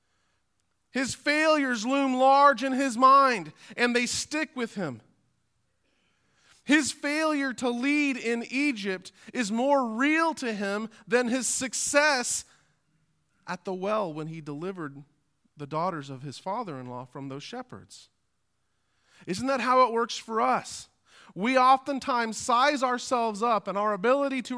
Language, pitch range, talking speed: English, 150-250 Hz, 135 wpm